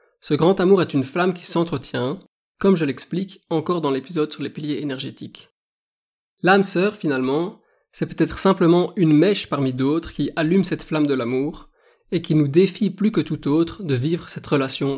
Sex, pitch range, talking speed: male, 145-175 Hz, 185 wpm